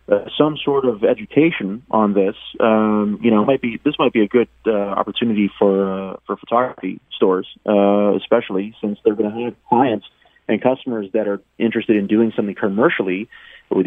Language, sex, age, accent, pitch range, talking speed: English, male, 30-49, American, 105-130 Hz, 180 wpm